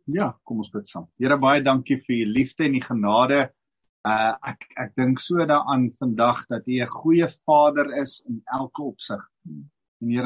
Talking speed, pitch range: 175 wpm, 115-150 Hz